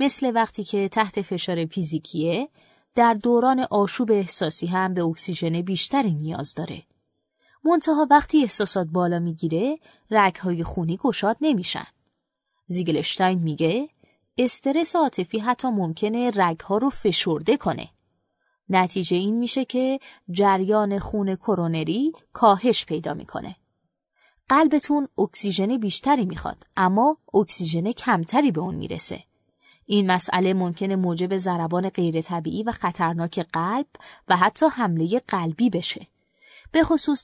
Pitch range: 175-245 Hz